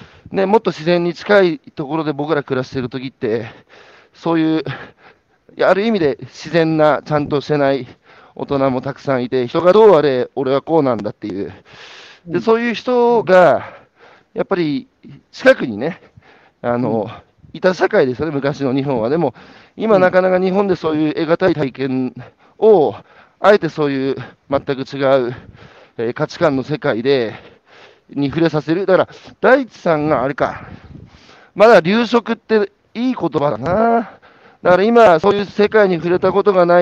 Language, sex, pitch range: Japanese, male, 140-190 Hz